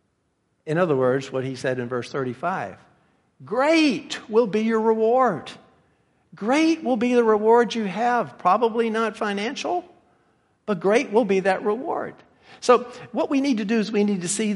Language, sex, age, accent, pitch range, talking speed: English, male, 50-69, American, 165-230 Hz, 170 wpm